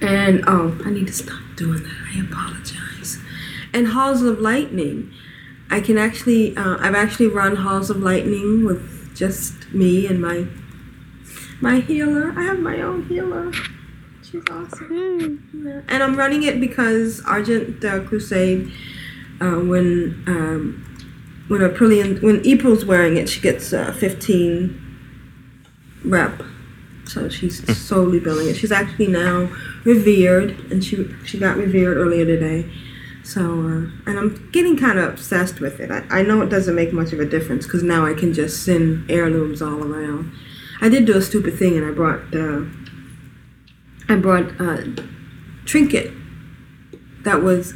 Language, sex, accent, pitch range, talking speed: English, female, American, 165-225 Hz, 150 wpm